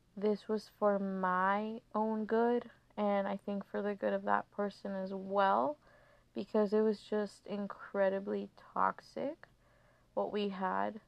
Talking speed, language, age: 140 wpm, English, 20-39